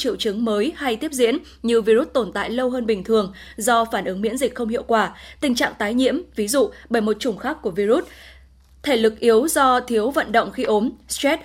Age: 20-39